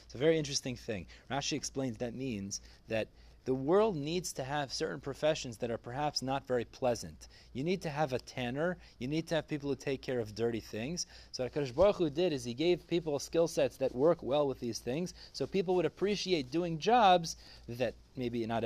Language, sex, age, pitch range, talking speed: English, male, 30-49, 120-175 Hz, 205 wpm